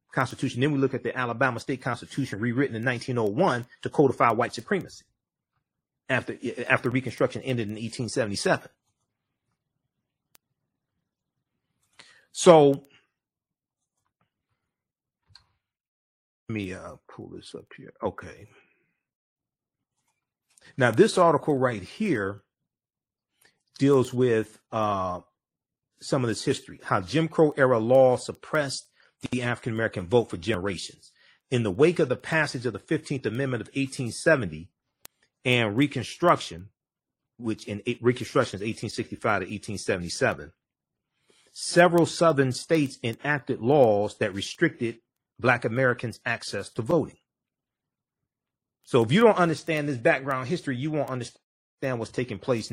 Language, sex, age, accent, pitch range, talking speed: English, male, 40-59, American, 110-140 Hz, 115 wpm